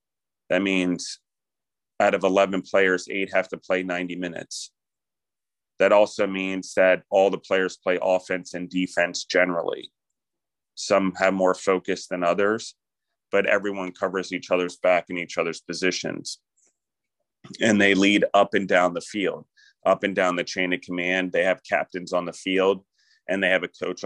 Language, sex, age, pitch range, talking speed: English, male, 30-49, 90-100 Hz, 165 wpm